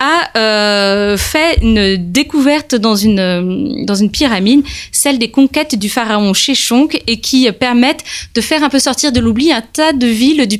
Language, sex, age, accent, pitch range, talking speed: French, female, 20-39, French, 215-275 Hz, 170 wpm